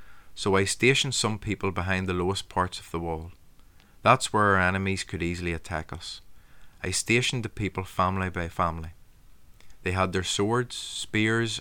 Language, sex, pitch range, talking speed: English, male, 90-105 Hz, 165 wpm